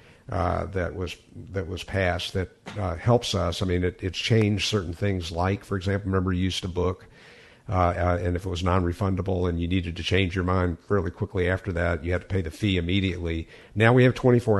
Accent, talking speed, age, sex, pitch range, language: American, 220 wpm, 50-69, male, 90-105 Hz, English